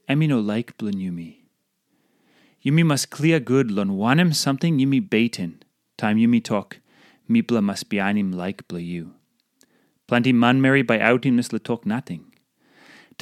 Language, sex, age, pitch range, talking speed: English, male, 30-49, 120-180 Hz, 150 wpm